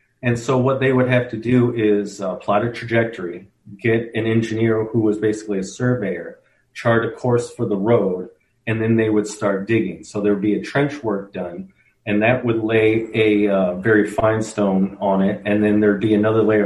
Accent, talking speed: American, 215 wpm